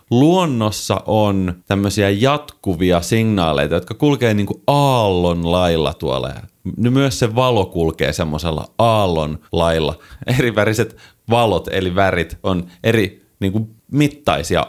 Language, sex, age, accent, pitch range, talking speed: Finnish, male, 30-49, native, 90-120 Hz, 110 wpm